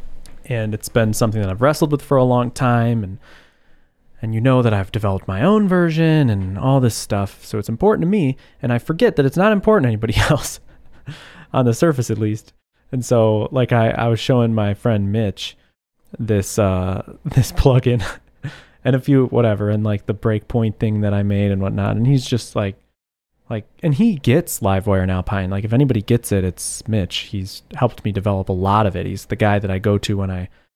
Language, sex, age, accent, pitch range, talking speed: English, male, 20-39, American, 100-130 Hz, 215 wpm